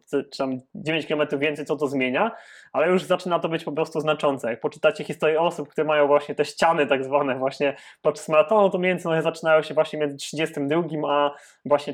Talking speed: 195 wpm